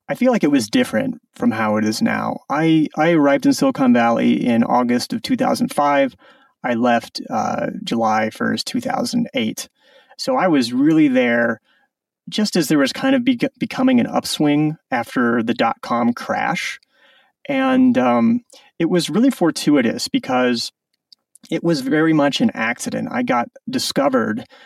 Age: 30-49